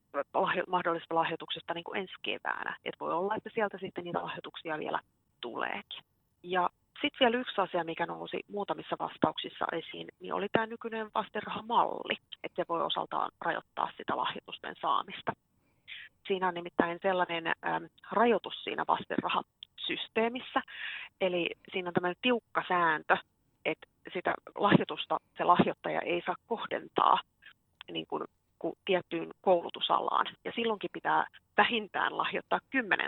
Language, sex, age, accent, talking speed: Finnish, female, 30-49, native, 125 wpm